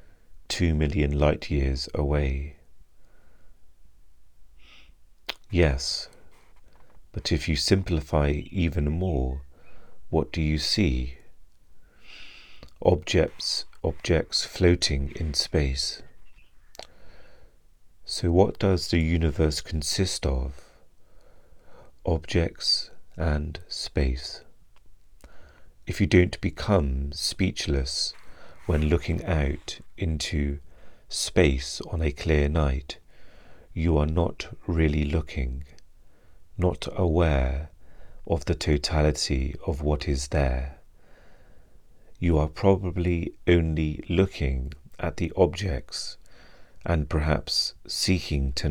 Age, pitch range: 40-59, 70-85 Hz